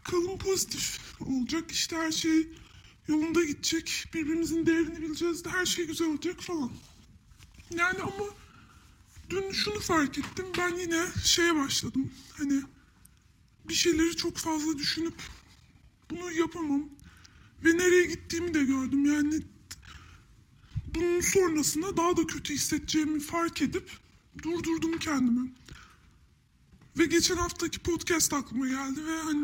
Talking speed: 120 wpm